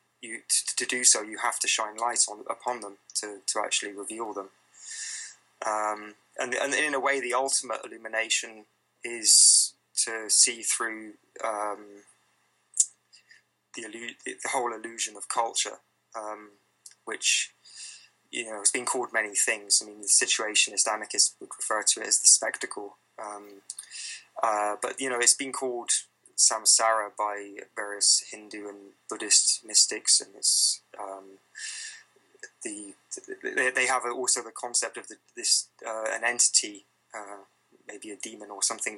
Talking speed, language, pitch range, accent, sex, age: 150 wpm, English, 105-125 Hz, British, male, 20-39